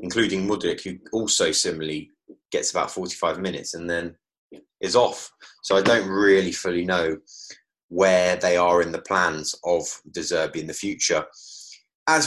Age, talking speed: 20-39, 155 wpm